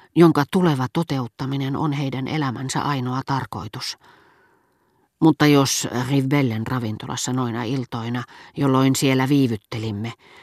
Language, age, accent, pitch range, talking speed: Finnish, 40-59, native, 120-150 Hz, 100 wpm